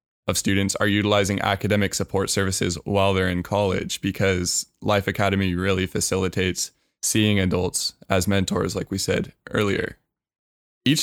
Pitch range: 95-115 Hz